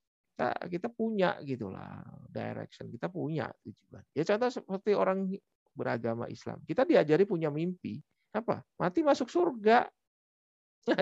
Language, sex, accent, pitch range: Indonesian, male, native, 120-185 Hz